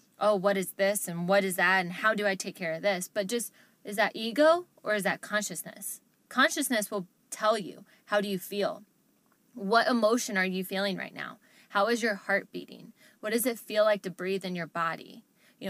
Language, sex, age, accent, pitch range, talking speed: English, female, 20-39, American, 195-240 Hz, 215 wpm